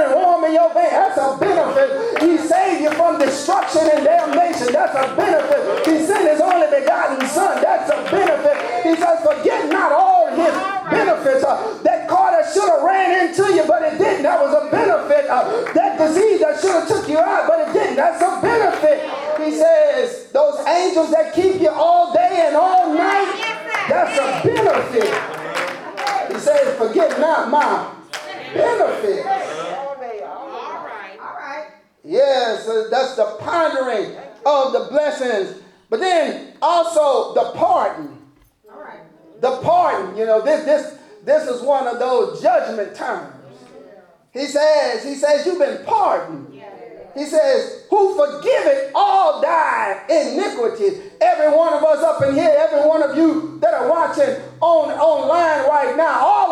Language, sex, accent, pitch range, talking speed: English, male, American, 290-350 Hz, 150 wpm